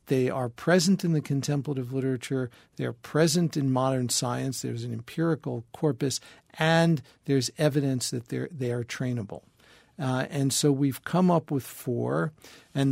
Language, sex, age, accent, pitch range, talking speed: English, male, 50-69, American, 130-160 Hz, 150 wpm